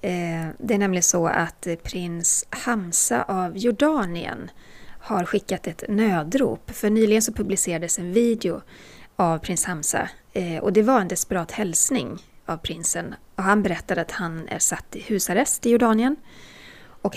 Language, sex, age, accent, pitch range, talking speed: Swedish, female, 30-49, native, 170-225 Hz, 145 wpm